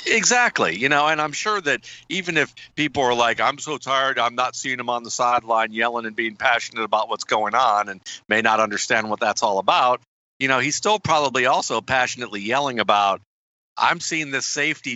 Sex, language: male, English